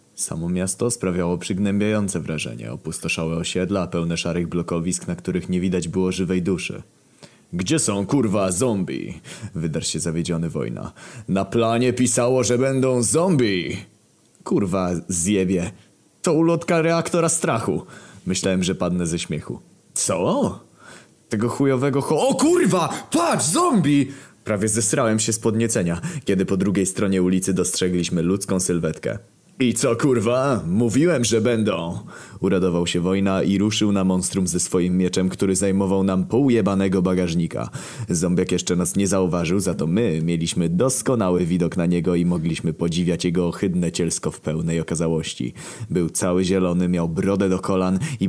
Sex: male